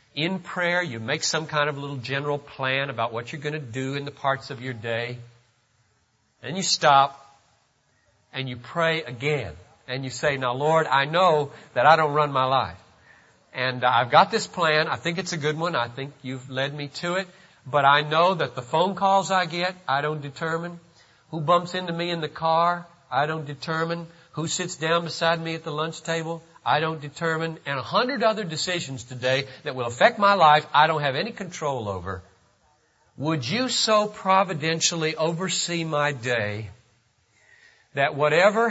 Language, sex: English, male